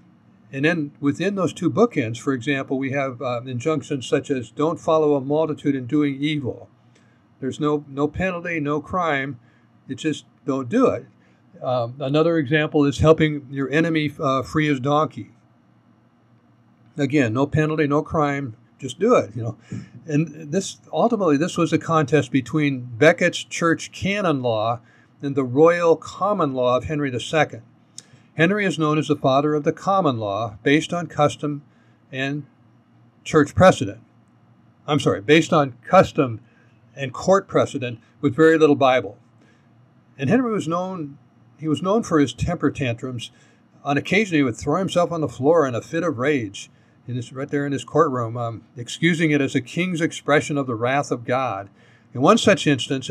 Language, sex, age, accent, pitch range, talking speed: English, male, 60-79, American, 125-155 Hz, 170 wpm